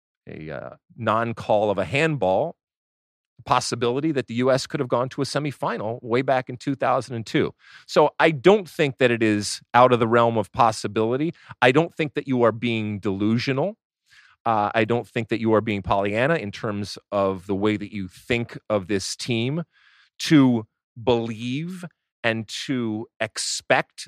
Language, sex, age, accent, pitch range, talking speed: English, male, 40-59, American, 115-150 Hz, 165 wpm